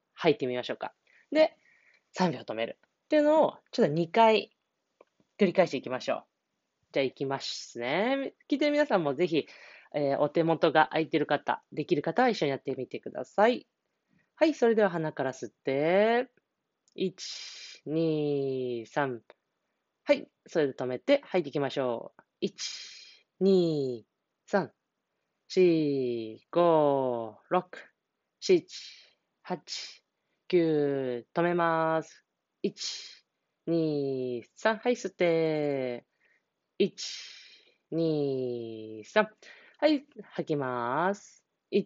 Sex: female